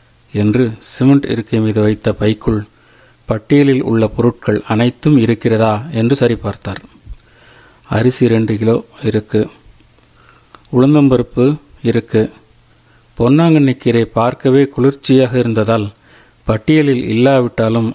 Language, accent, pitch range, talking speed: Tamil, native, 115-140 Hz, 80 wpm